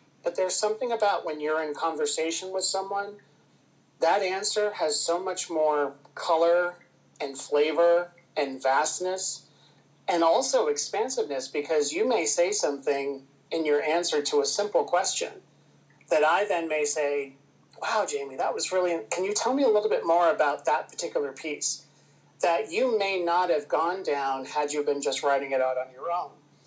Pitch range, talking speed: 145-200 Hz, 170 wpm